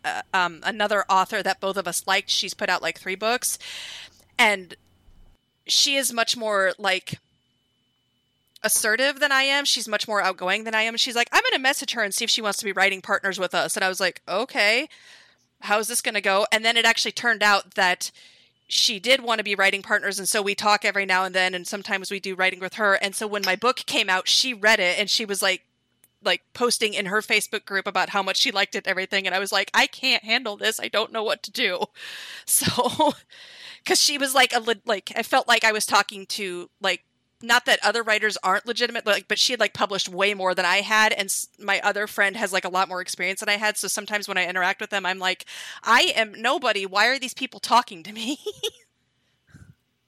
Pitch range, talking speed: 190-230 Hz, 235 wpm